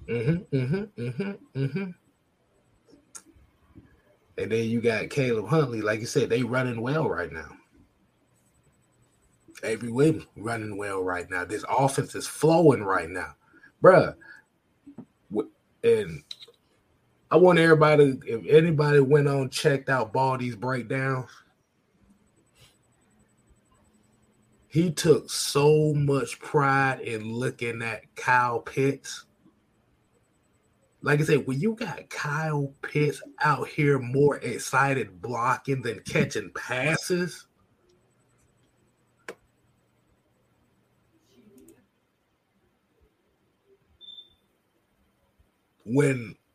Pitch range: 120-155 Hz